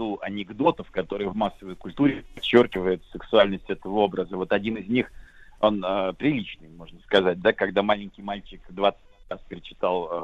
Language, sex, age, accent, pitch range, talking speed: Russian, male, 40-59, native, 100-135 Hz, 150 wpm